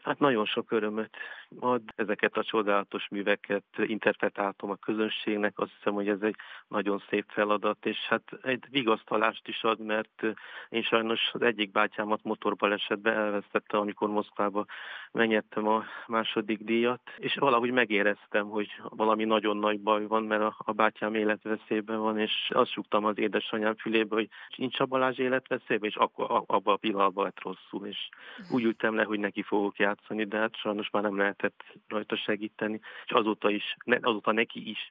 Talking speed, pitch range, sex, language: 160 wpm, 105-110 Hz, male, Hungarian